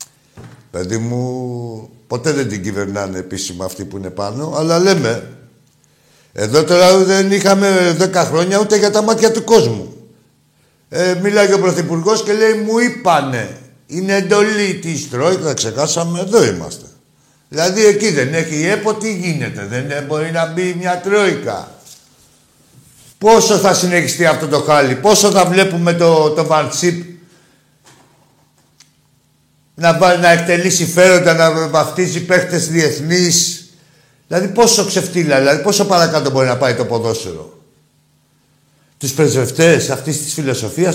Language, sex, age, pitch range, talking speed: Greek, male, 60-79, 140-185 Hz, 125 wpm